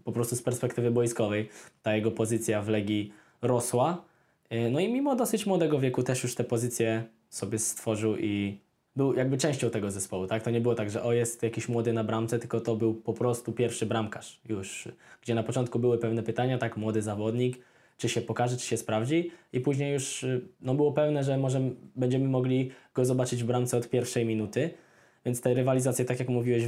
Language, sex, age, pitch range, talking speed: Polish, male, 10-29, 115-130 Hz, 195 wpm